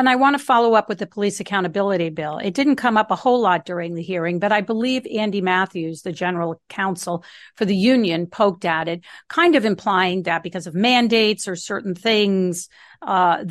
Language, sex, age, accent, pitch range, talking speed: English, female, 50-69, American, 175-215 Hz, 205 wpm